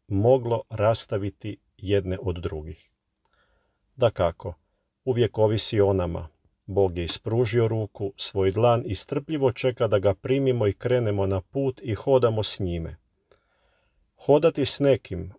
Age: 40-59